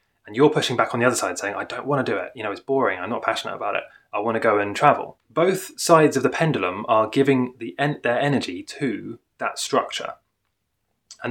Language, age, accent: English, 20-39, British